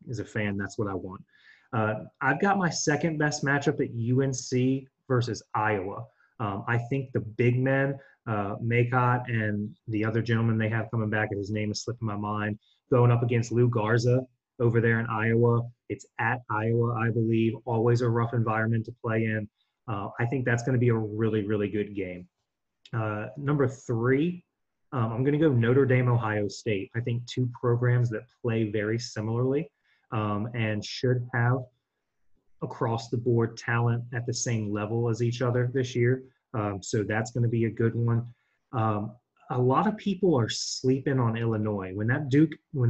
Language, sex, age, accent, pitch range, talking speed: English, male, 30-49, American, 110-130 Hz, 180 wpm